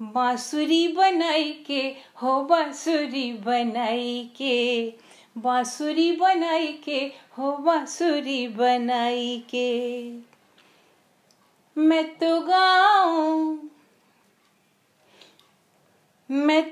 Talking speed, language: 65 wpm, English